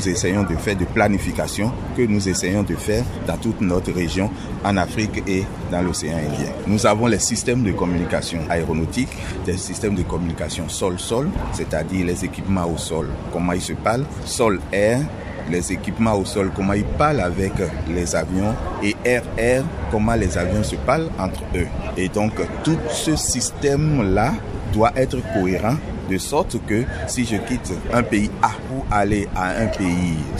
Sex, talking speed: male, 165 wpm